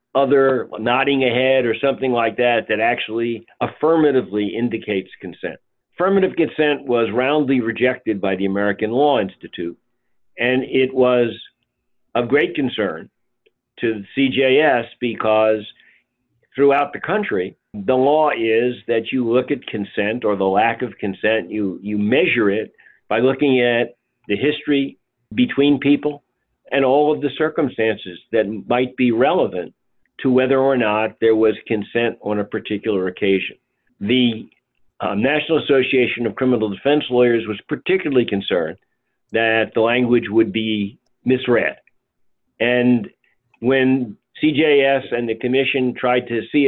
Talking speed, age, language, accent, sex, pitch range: 135 wpm, 50-69, English, American, male, 115-140 Hz